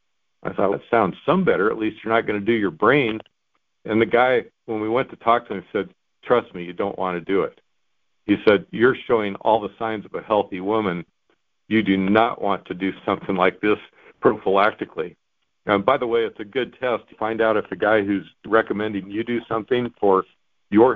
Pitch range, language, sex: 105-130 Hz, English, male